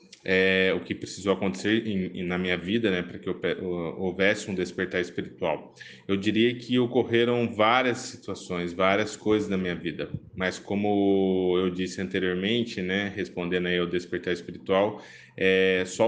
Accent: Brazilian